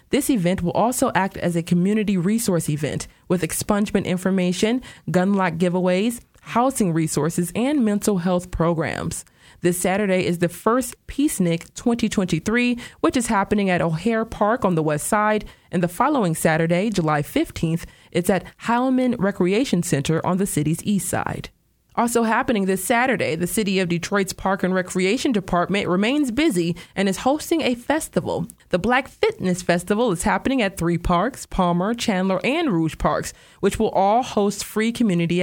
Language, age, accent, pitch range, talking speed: English, 20-39, American, 175-230 Hz, 160 wpm